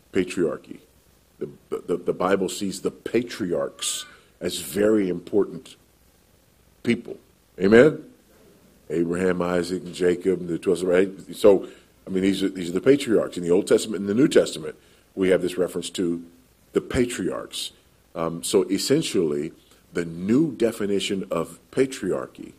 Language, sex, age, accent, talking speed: English, male, 40-59, American, 135 wpm